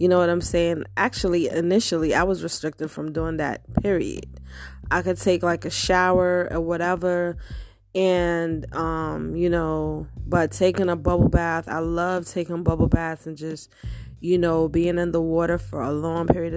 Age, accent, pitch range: 20-39, American, 150-175 Hz